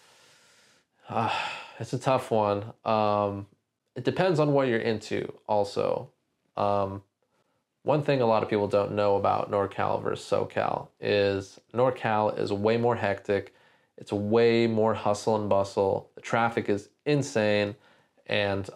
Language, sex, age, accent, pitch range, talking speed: English, male, 20-39, American, 100-125 Hz, 140 wpm